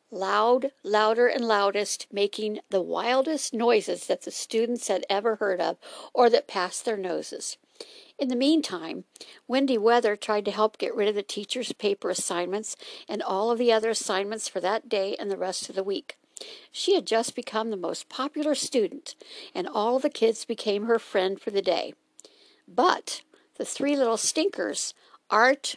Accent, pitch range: American, 205-275 Hz